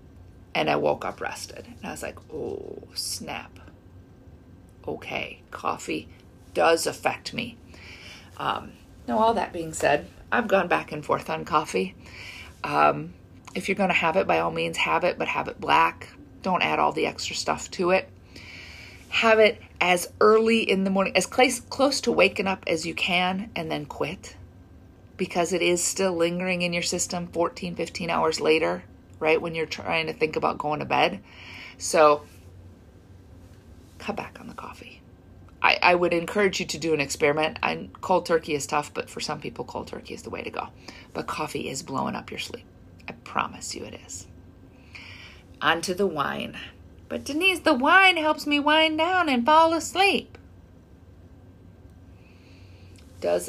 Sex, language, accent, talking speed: female, English, American, 170 wpm